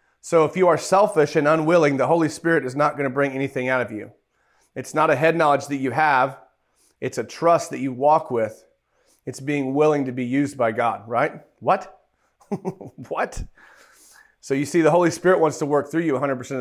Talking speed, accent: 205 wpm, American